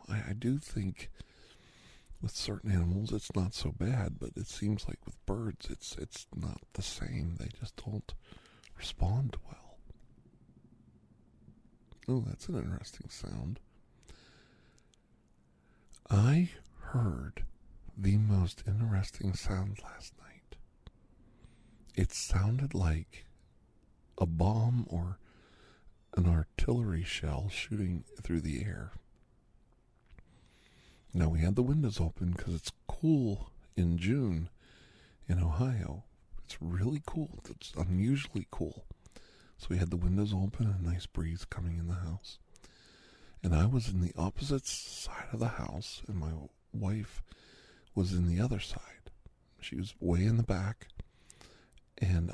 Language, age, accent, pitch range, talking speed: English, 50-69, American, 85-110 Hz, 125 wpm